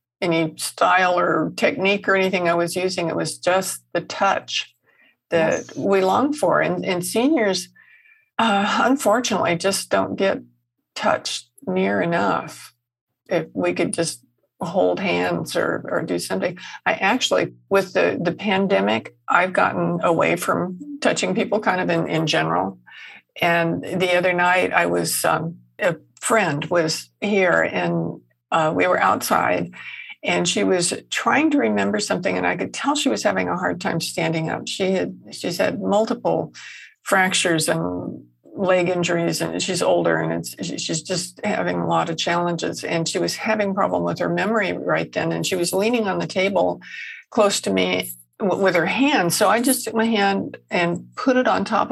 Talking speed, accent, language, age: 165 wpm, American, English, 60-79